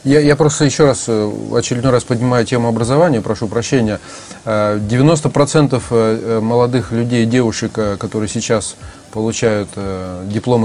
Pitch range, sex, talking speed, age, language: 105-130 Hz, male, 115 wpm, 20-39, Russian